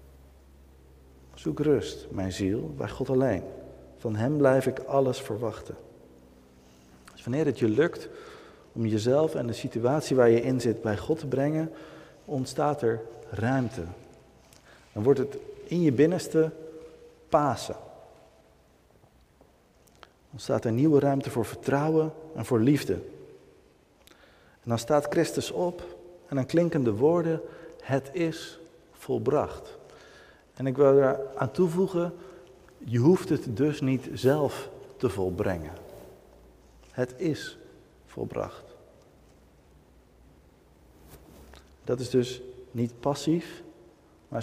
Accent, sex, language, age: Dutch, male, Dutch, 50-69